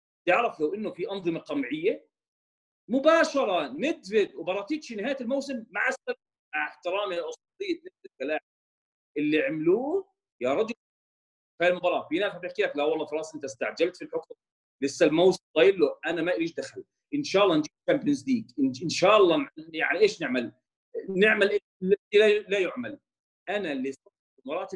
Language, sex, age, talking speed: Arabic, male, 40-59, 140 wpm